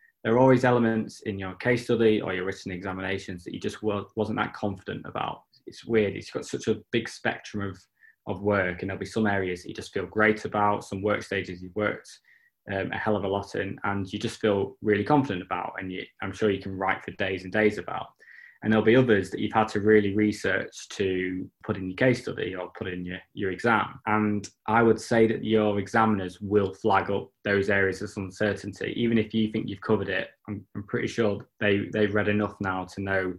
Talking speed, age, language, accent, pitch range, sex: 225 wpm, 20-39, English, British, 95-110 Hz, male